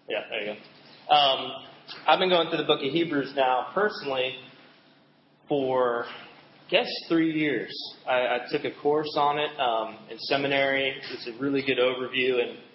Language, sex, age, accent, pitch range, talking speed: English, male, 20-39, American, 120-145 Hz, 170 wpm